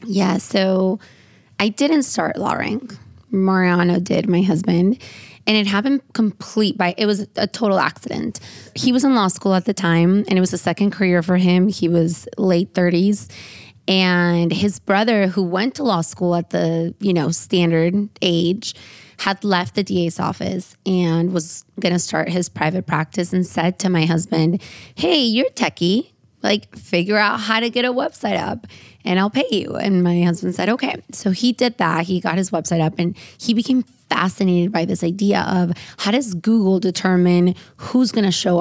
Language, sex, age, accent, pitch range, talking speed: English, female, 20-39, American, 175-205 Hz, 185 wpm